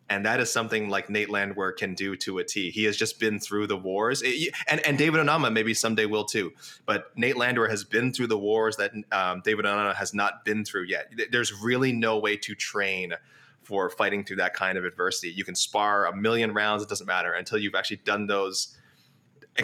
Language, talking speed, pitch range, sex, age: English, 215 wpm, 100-115 Hz, male, 20-39